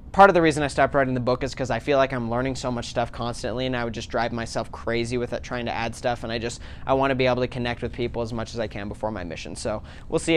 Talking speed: 325 wpm